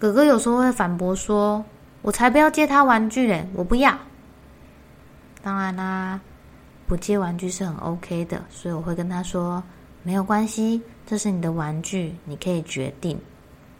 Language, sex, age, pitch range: Chinese, female, 20-39, 170-215 Hz